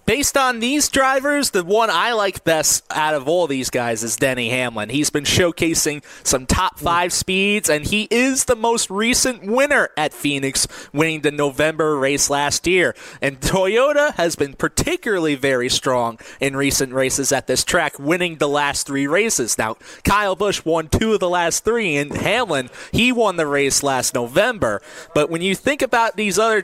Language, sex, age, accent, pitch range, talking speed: English, male, 20-39, American, 140-215 Hz, 180 wpm